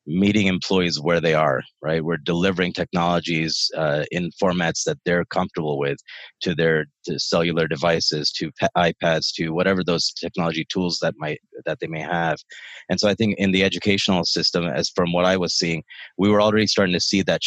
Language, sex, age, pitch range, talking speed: English, male, 30-49, 85-95 Hz, 190 wpm